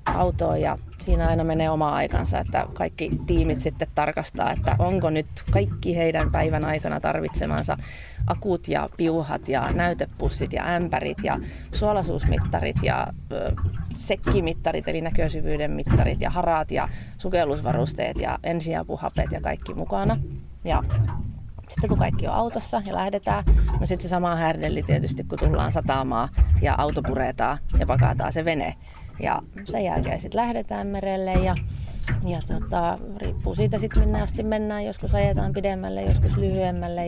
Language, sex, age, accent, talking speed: Finnish, female, 30-49, native, 135 wpm